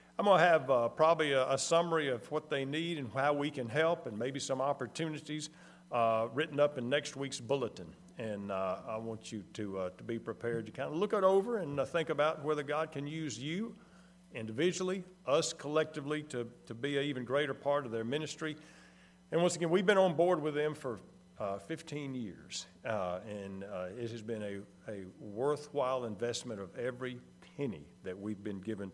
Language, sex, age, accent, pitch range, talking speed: English, male, 50-69, American, 125-180 Hz, 200 wpm